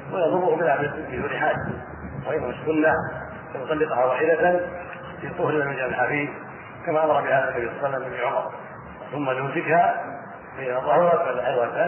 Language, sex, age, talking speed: Arabic, male, 40-59, 115 wpm